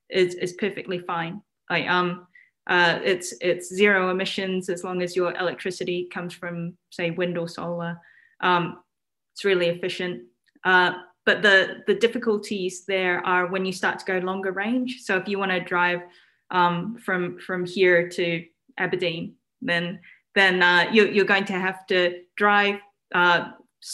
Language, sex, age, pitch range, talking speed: English, female, 10-29, 180-205 Hz, 160 wpm